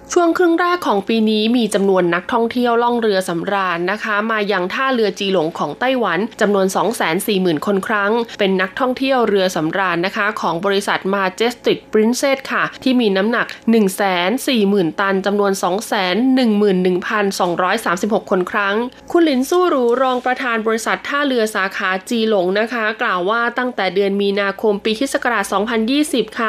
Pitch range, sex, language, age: 195-250 Hz, female, Thai, 20-39